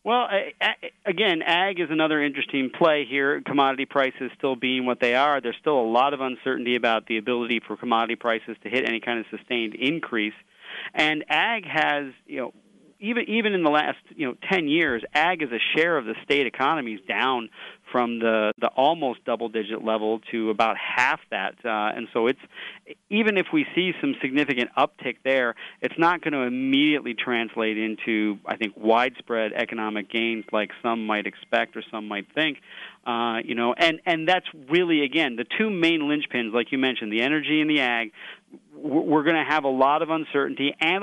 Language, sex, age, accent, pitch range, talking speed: English, male, 40-59, American, 115-155 Hz, 195 wpm